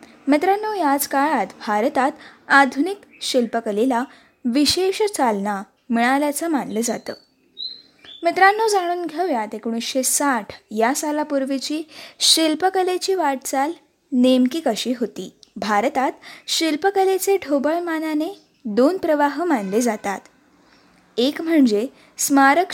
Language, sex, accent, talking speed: Marathi, female, native, 85 wpm